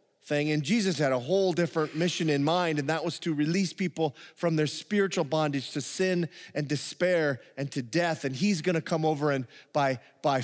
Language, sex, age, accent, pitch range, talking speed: English, male, 30-49, American, 150-205 Hz, 195 wpm